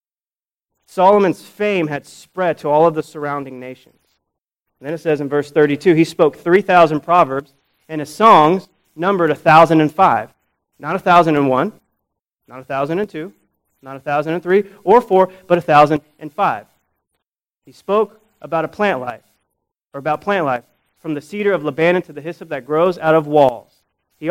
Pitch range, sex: 135-175 Hz, male